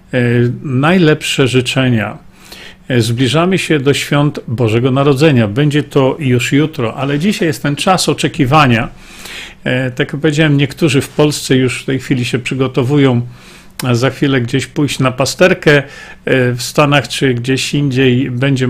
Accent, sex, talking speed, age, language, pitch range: native, male, 135 wpm, 40-59, Polish, 125-155 Hz